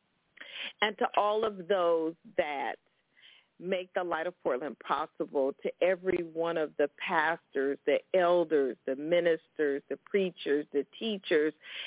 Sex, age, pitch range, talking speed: female, 40-59, 175-215 Hz, 130 wpm